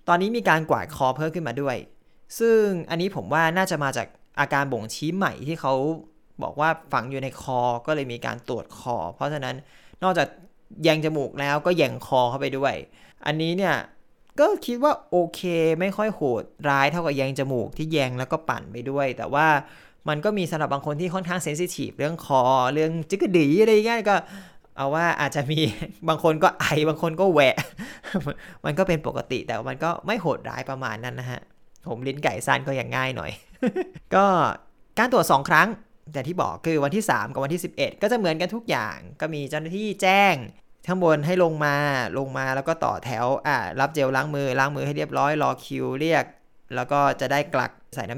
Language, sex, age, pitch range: Thai, male, 20-39, 135-180 Hz